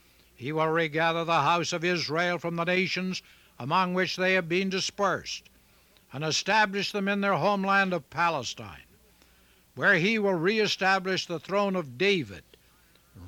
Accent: American